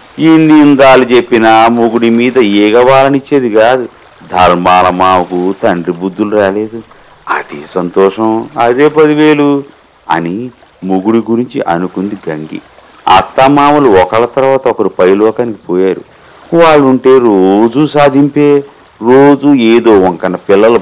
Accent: native